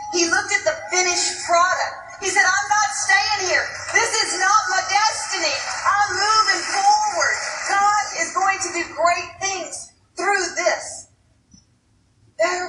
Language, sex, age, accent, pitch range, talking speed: English, female, 40-59, American, 275-355 Hz, 140 wpm